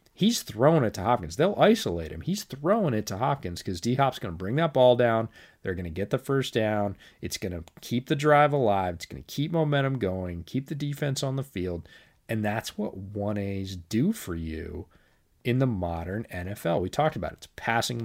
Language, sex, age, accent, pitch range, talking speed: English, male, 30-49, American, 95-135 Hz, 215 wpm